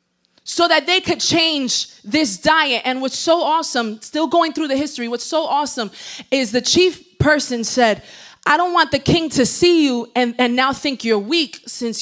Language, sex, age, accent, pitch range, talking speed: English, female, 20-39, American, 250-335 Hz, 195 wpm